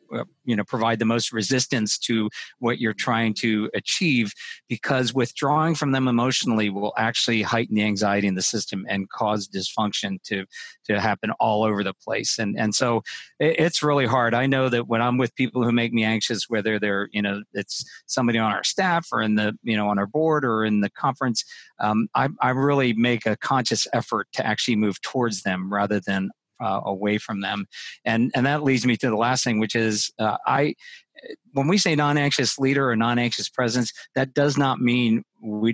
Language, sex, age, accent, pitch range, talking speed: English, male, 50-69, American, 105-130 Hz, 200 wpm